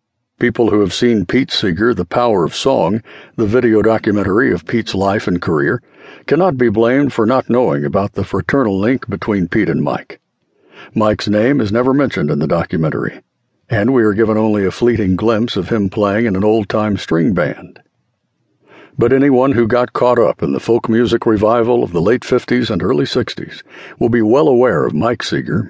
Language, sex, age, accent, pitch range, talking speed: English, male, 60-79, American, 105-125 Hz, 190 wpm